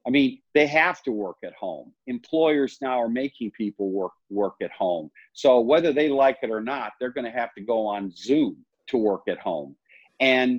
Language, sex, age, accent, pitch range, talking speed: English, male, 50-69, American, 110-145 Hz, 210 wpm